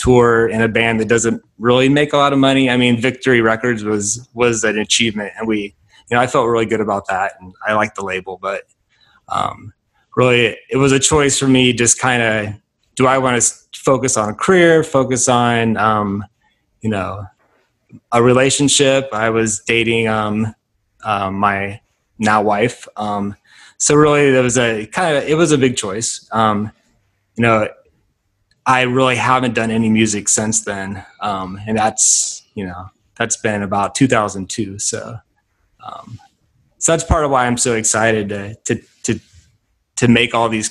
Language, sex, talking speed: English, male, 180 wpm